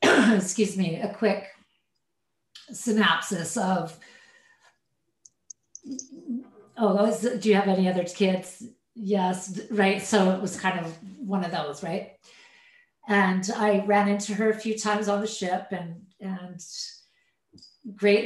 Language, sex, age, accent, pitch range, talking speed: English, female, 40-59, American, 180-215 Hz, 130 wpm